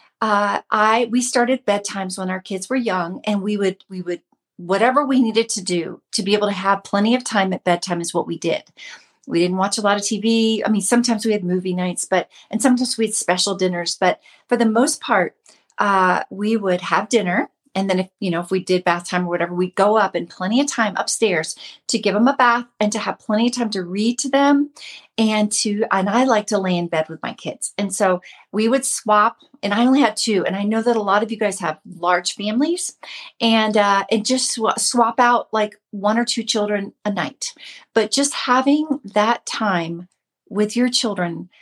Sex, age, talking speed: female, 40-59, 225 wpm